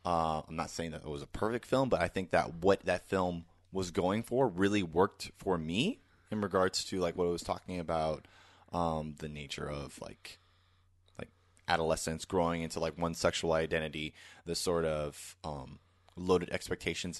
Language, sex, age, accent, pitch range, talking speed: English, male, 30-49, American, 80-95 Hz, 180 wpm